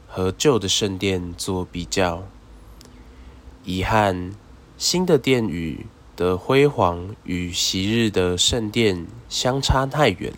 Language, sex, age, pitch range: Chinese, male, 20-39, 90-115 Hz